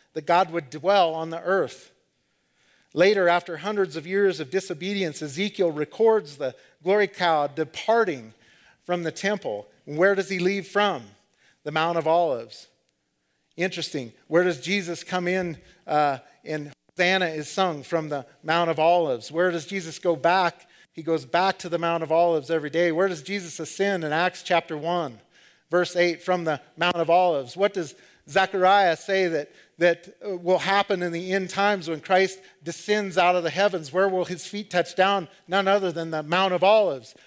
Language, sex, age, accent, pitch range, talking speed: English, male, 40-59, American, 150-185 Hz, 175 wpm